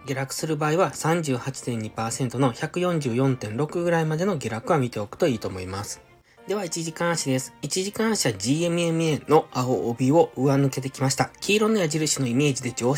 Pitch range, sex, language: 115-165 Hz, male, Japanese